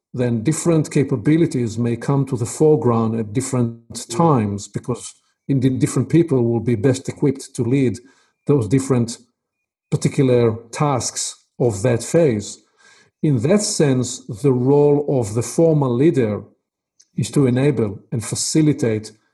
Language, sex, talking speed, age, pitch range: English, male, 130 wpm, 50-69, 120-145 Hz